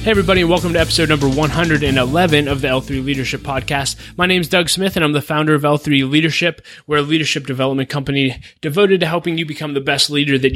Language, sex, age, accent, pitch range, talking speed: English, male, 20-39, American, 130-150 Hz, 220 wpm